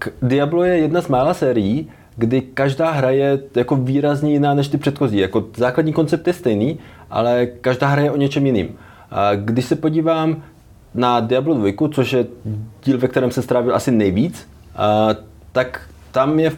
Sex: male